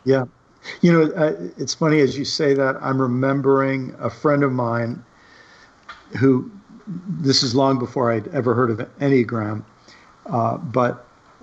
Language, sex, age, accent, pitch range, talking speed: English, male, 50-69, American, 120-140 Hz, 145 wpm